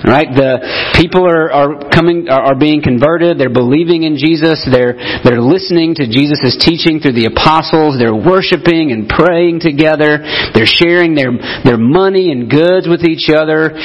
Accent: American